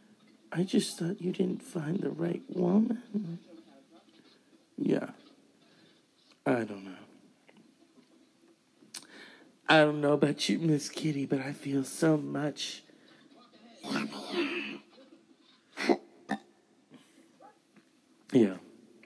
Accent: American